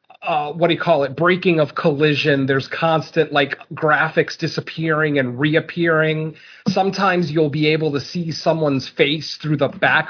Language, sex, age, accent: English, male, 30-49, American